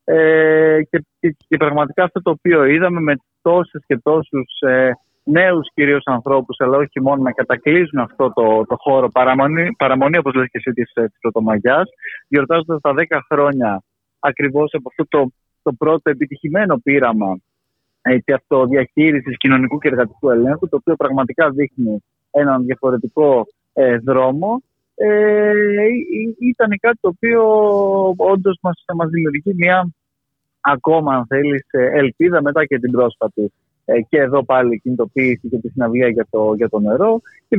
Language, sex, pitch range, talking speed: Greek, male, 130-165 Hz, 150 wpm